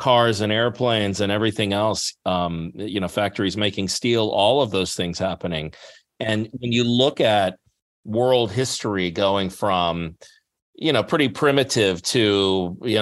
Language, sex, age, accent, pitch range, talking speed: English, male, 40-59, American, 100-120 Hz, 150 wpm